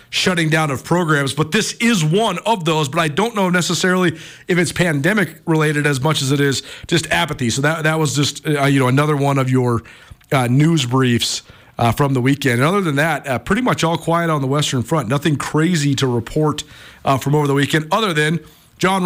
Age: 40-59